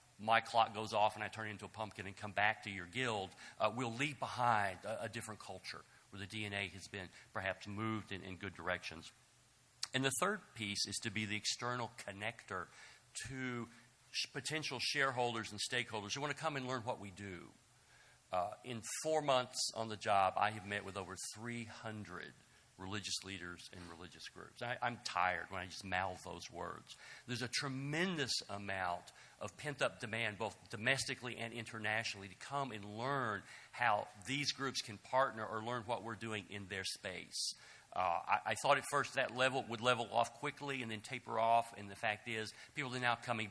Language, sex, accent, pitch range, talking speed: English, male, American, 100-125 Hz, 190 wpm